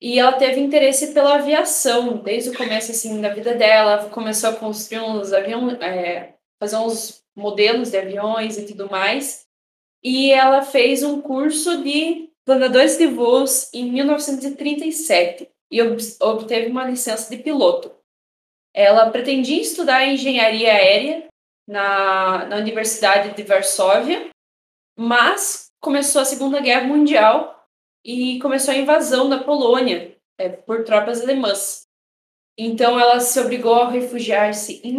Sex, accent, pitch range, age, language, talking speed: female, Brazilian, 210-270 Hz, 10-29, Portuguese, 130 wpm